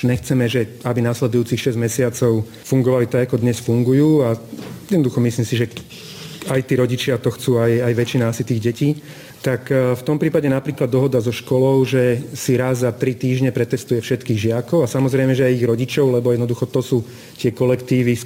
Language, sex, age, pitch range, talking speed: Slovak, male, 40-59, 120-135 Hz, 185 wpm